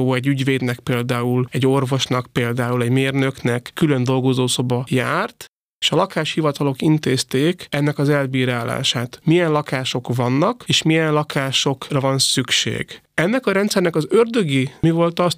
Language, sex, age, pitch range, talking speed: Hungarian, male, 30-49, 125-160 Hz, 135 wpm